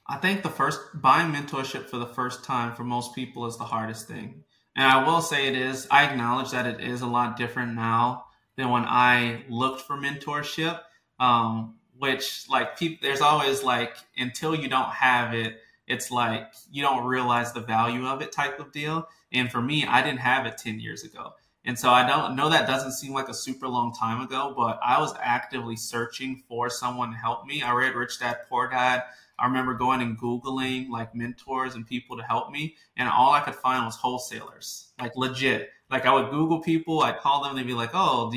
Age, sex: 20-39, male